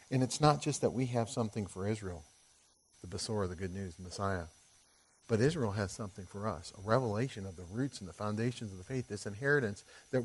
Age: 40-59